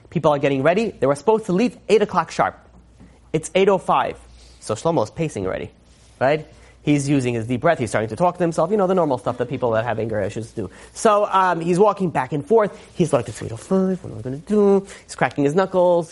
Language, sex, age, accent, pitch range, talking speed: English, male, 30-49, American, 140-210 Hz, 235 wpm